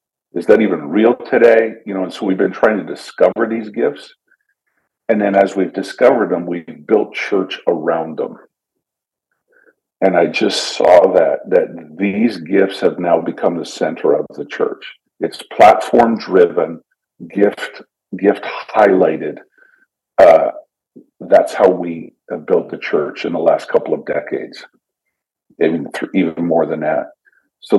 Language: English